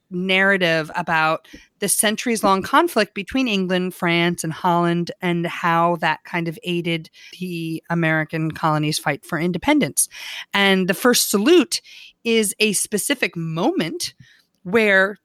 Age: 30-49